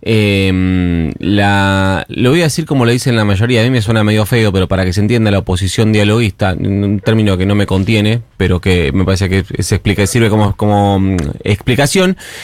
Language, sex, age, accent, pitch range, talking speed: Spanish, male, 30-49, Argentinian, 105-145 Hz, 205 wpm